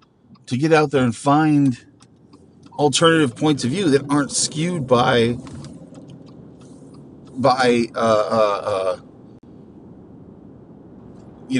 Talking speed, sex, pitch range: 95 wpm, male, 110-145 Hz